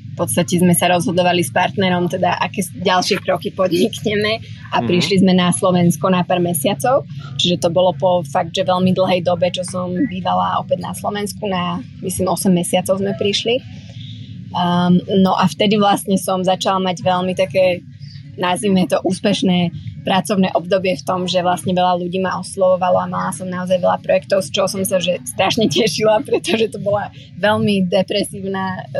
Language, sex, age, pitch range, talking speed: Slovak, female, 20-39, 175-190 Hz, 170 wpm